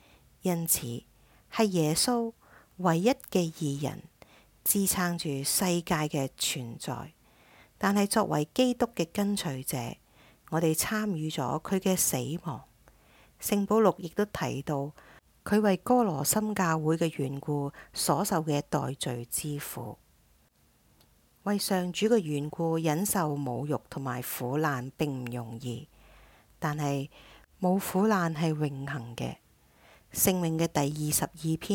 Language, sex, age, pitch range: English, female, 50-69, 135-185 Hz